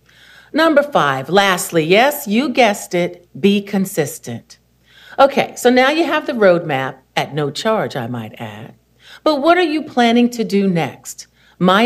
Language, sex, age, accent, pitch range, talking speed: English, female, 40-59, American, 165-265 Hz, 155 wpm